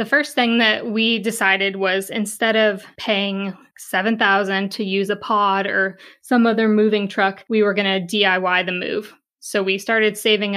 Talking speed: 180 wpm